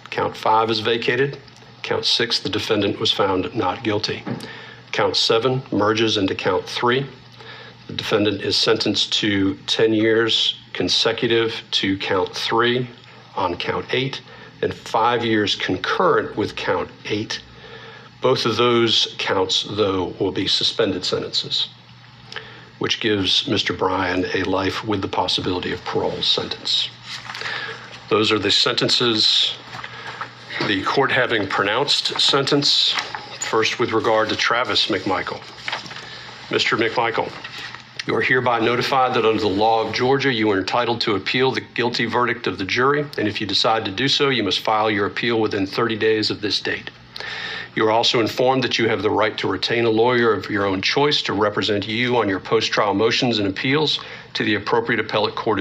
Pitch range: 105-125 Hz